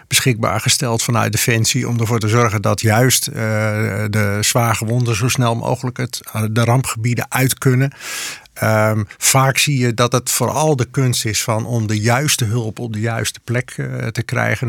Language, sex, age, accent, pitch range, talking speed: Dutch, male, 50-69, Dutch, 110-125 Hz, 180 wpm